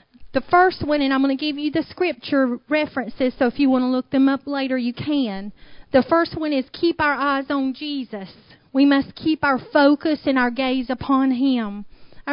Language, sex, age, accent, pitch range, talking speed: English, female, 40-59, American, 235-285 Hz, 210 wpm